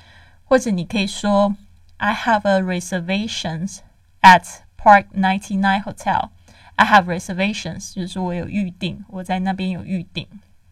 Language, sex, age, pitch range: Chinese, female, 20-39, 175-205 Hz